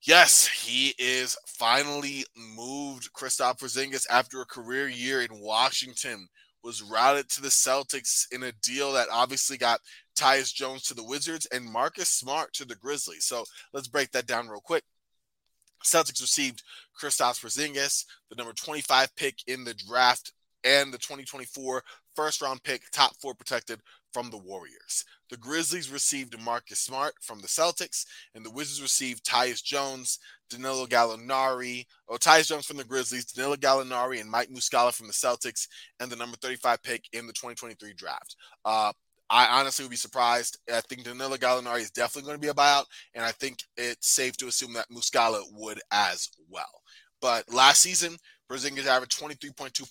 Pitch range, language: 120-140 Hz, English